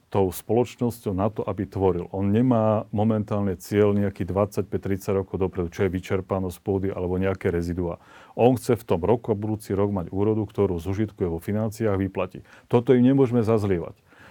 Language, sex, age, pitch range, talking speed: Slovak, male, 40-59, 100-120 Hz, 165 wpm